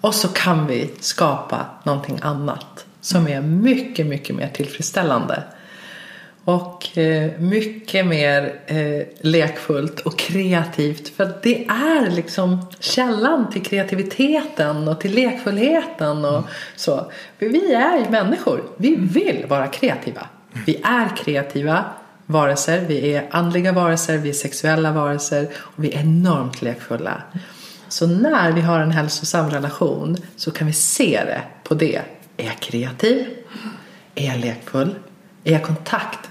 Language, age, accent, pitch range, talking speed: Swedish, 40-59, native, 150-195 Hz, 130 wpm